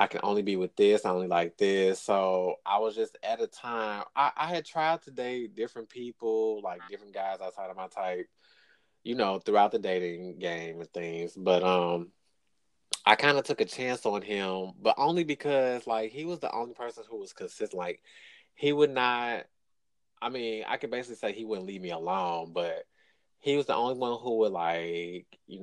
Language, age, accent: English, 20-39, American